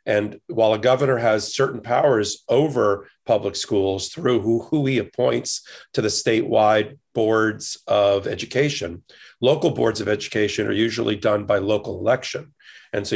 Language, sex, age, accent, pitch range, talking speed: English, male, 40-59, American, 105-130 Hz, 150 wpm